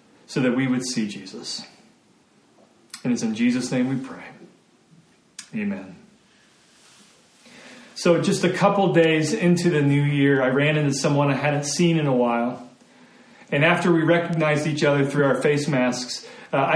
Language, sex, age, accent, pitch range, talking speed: English, male, 40-59, American, 140-195 Hz, 160 wpm